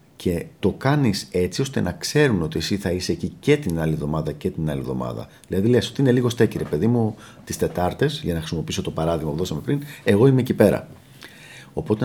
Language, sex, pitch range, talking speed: Greek, male, 85-130 Hz, 215 wpm